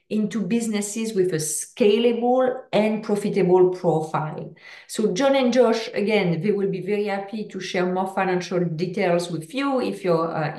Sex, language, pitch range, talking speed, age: female, English, 170-210 Hz, 160 wpm, 40-59